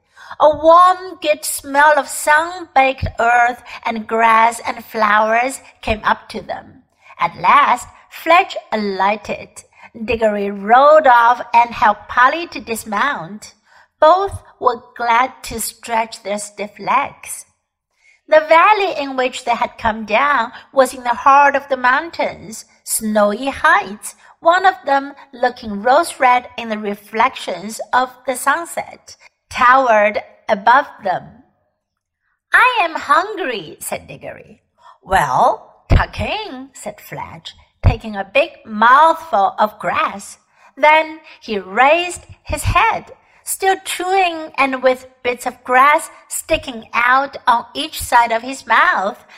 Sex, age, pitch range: female, 60-79, 235-320 Hz